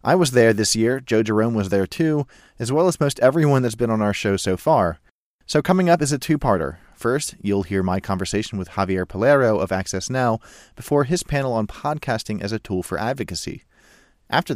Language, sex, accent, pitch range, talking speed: English, male, American, 100-135 Hz, 205 wpm